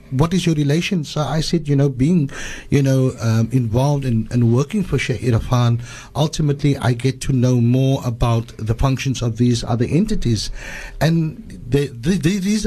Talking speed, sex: 160 wpm, male